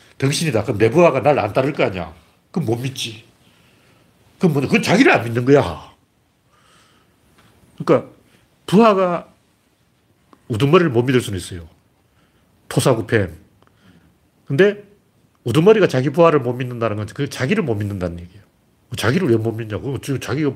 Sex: male